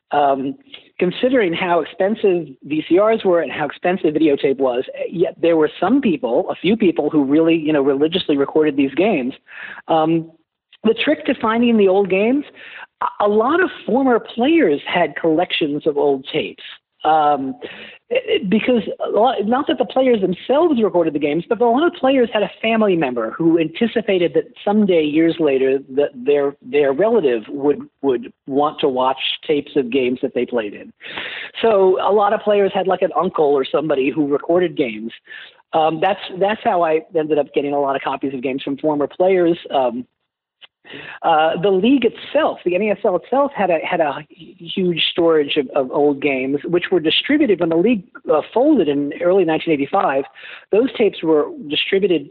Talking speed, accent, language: 170 wpm, American, English